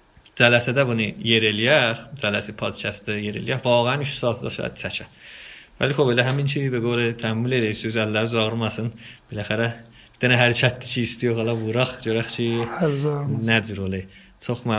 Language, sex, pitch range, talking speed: Persian, male, 110-135 Hz, 110 wpm